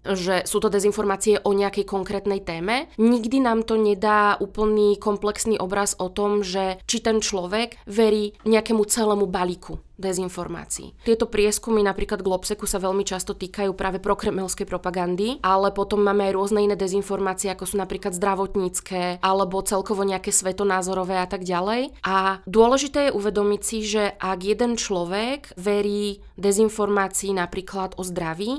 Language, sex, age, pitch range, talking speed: Slovak, female, 20-39, 185-215 Hz, 145 wpm